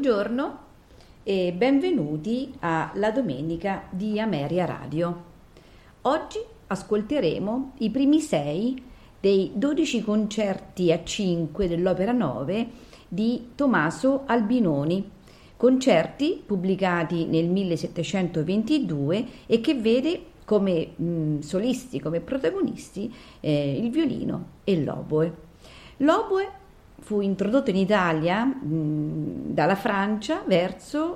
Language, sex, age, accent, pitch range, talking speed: Italian, female, 40-59, native, 170-245 Hz, 90 wpm